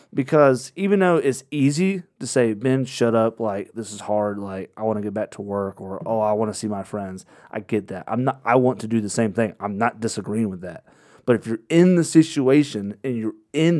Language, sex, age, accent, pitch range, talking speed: English, male, 30-49, American, 110-130 Hz, 250 wpm